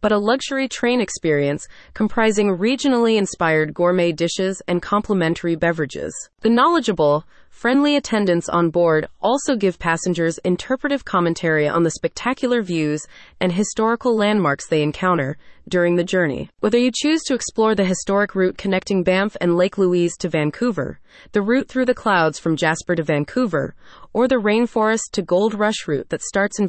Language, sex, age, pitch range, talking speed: English, female, 30-49, 170-225 Hz, 155 wpm